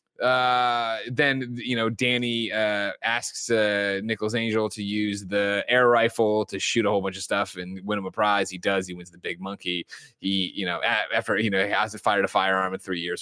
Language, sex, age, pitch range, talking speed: English, male, 20-39, 90-110 Hz, 220 wpm